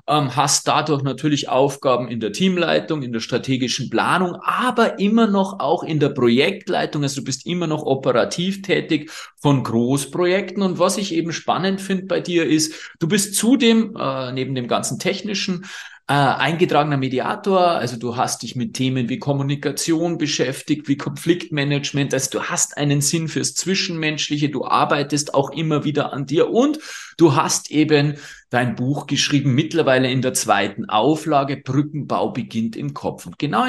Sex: male